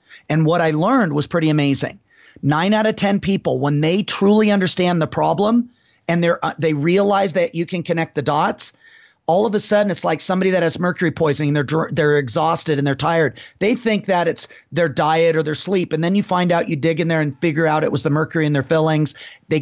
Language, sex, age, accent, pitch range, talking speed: English, male, 40-59, American, 160-195 Hz, 225 wpm